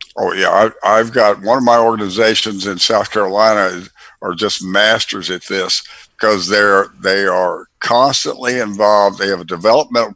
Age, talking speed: 60-79, 155 wpm